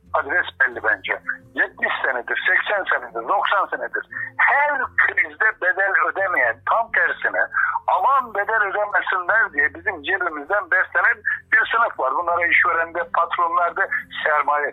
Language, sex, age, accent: Turkish, male, 60-79, native